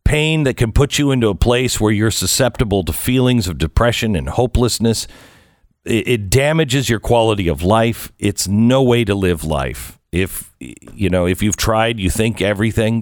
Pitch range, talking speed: 90-115 Hz, 175 wpm